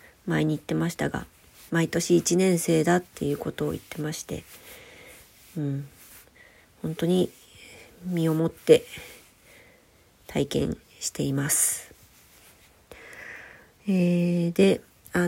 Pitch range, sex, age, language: 145-180 Hz, female, 40-59, Japanese